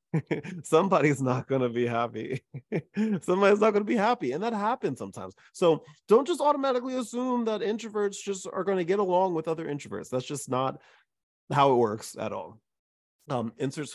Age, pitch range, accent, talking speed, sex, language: 30-49, 125-200 Hz, American, 180 wpm, male, English